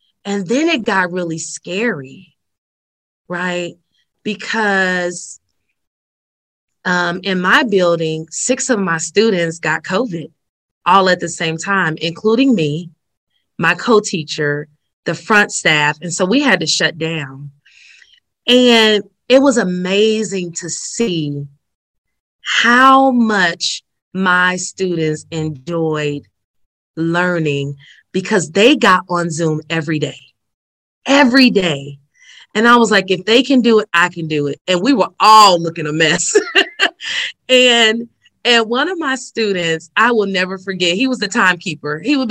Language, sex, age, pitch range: English, female, 30-49, 165-230 Hz